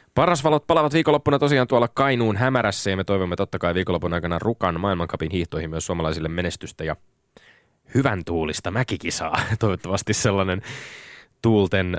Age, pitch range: 20-39, 85-120 Hz